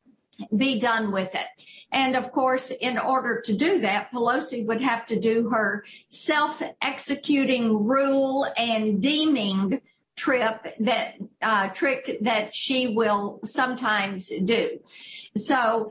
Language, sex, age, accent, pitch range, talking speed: English, female, 50-69, American, 210-250 Hz, 125 wpm